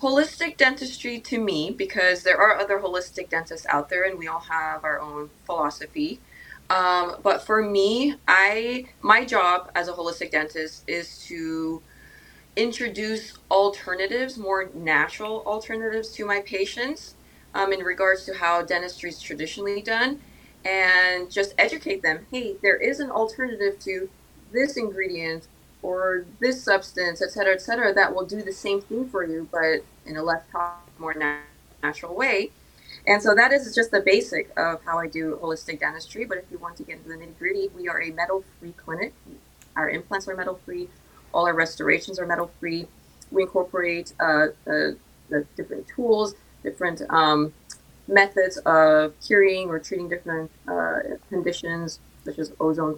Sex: female